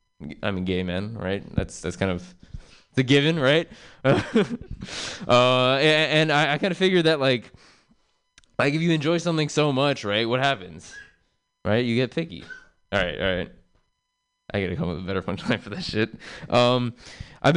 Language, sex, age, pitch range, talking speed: English, male, 20-39, 100-135 Hz, 190 wpm